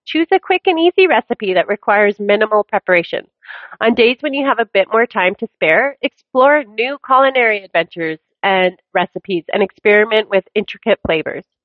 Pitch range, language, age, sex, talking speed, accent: 185-260 Hz, English, 30-49, female, 165 wpm, American